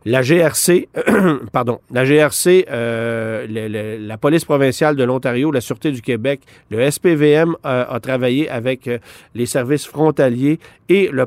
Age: 50-69